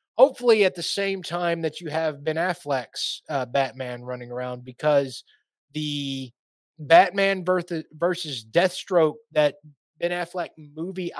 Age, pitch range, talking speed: 20-39, 145-185 Hz, 125 wpm